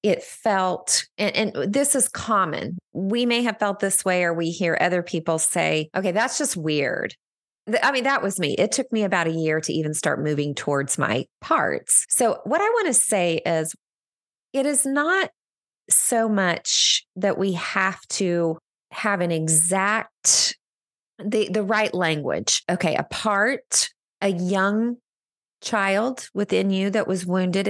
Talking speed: 160 wpm